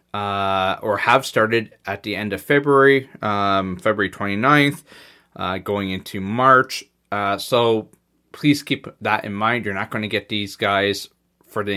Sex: male